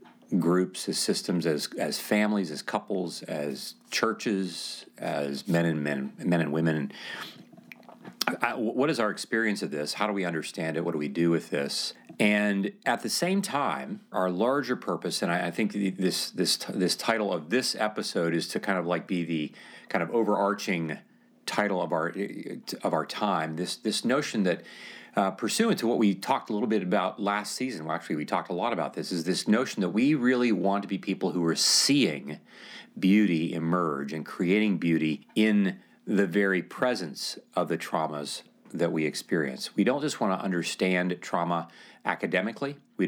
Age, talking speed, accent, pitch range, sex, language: 40-59, 185 wpm, American, 85-105 Hz, male, English